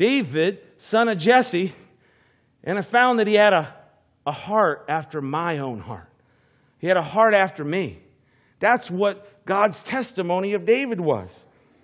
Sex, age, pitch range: male, 50-69, 135-210 Hz